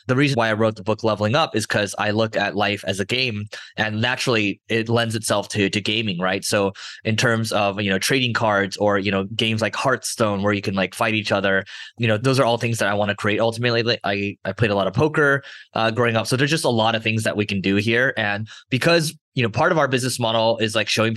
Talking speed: 265 wpm